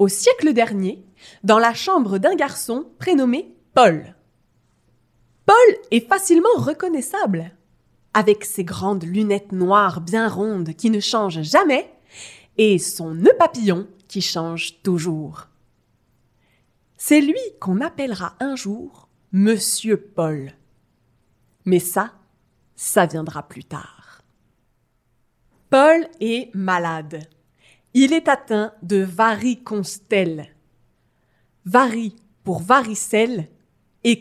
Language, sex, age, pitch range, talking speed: French, female, 20-39, 180-275 Hz, 100 wpm